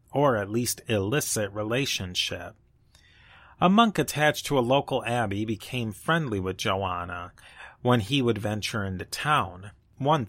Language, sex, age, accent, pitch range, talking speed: English, male, 30-49, American, 100-130 Hz, 135 wpm